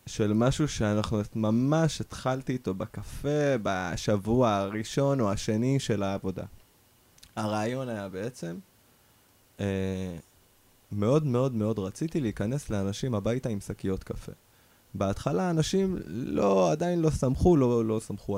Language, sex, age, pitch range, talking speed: Hebrew, male, 20-39, 100-135 Hz, 120 wpm